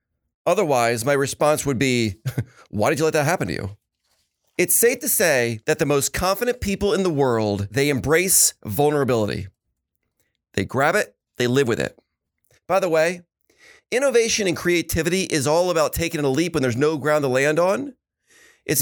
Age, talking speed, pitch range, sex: 40-59, 175 wpm, 120-185 Hz, male